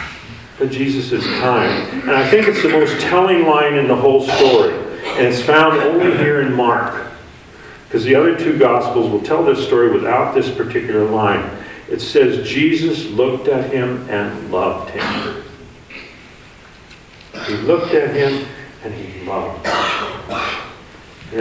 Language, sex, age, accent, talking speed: English, male, 50-69, American, 150 wpm